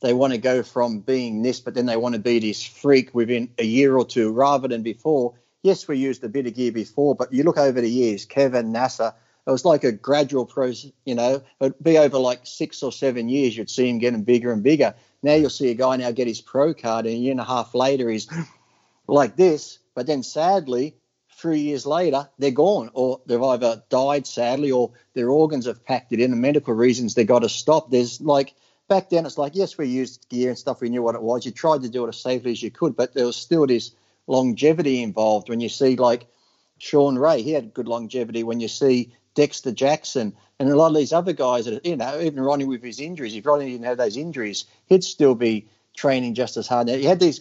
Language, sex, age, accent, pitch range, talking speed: English, male, 40-59, Australian, 120-140 Hz, 240 wpm